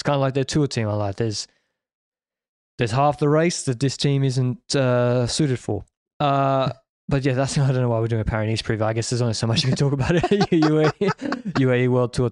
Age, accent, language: 20-39, Australian, English